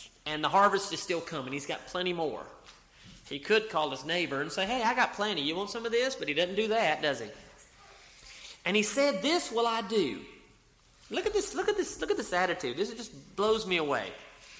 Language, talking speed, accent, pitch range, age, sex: English, 225 wpm, American, 180-265 Hz, 30-49, male